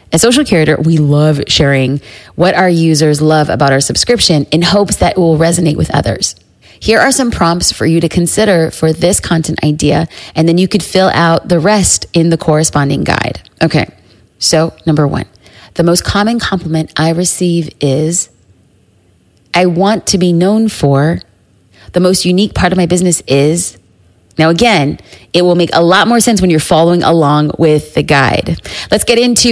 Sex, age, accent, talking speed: female, 30-49, American, 180 wpm